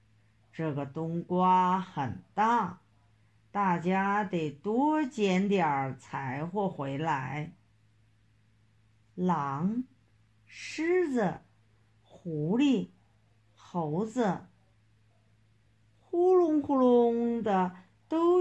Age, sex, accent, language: 50-69, female, native, Chinese